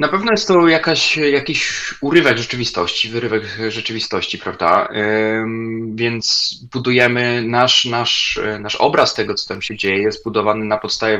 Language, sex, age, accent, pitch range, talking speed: Polish, male, 20-39, native, 110-130 Hz, 140 wpm